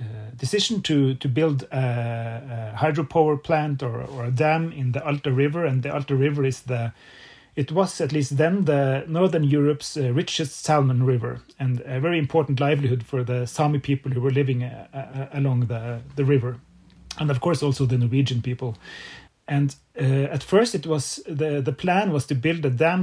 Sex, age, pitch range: male, 30-49, 125-150 Hz